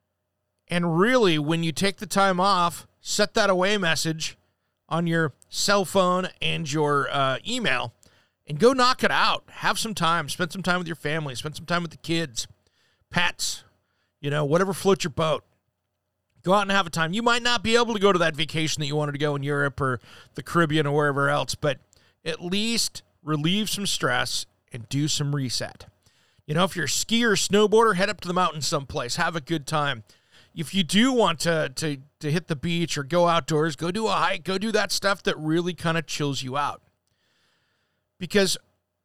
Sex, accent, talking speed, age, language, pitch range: male, American, 205 wpm, 40-59, English, 120-185 Hz